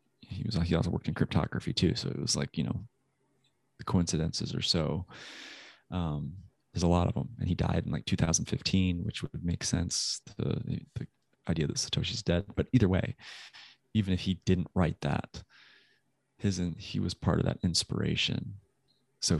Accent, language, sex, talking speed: American, English, male, 180 wpm